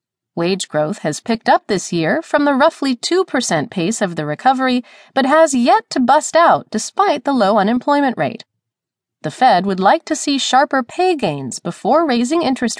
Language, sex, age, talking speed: English, female, 30-49, 180 wpm